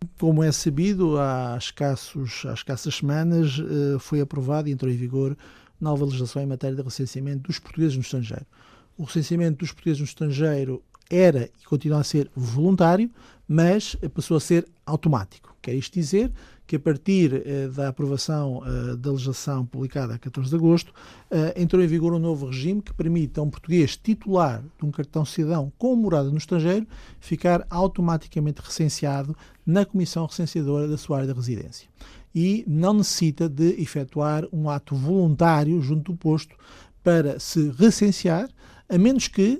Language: Portuguese